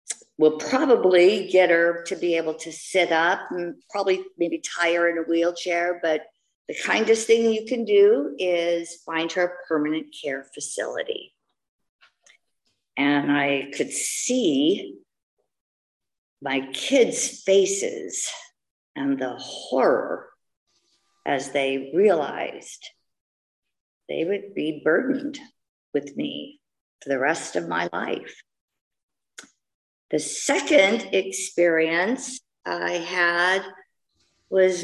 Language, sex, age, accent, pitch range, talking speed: English, female, 50-69, American, 160-240 Hz, 110 wpm